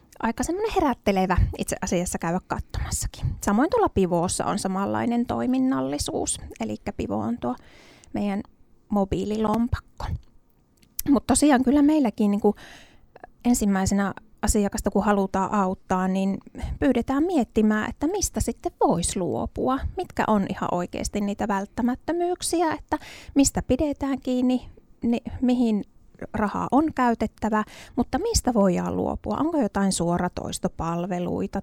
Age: 20-39